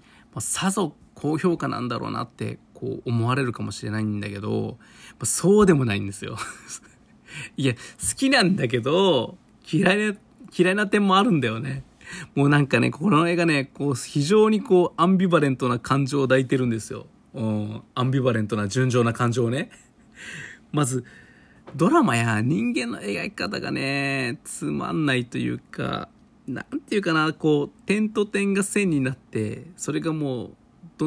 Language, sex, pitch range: Japanese, male, 115-165 Hz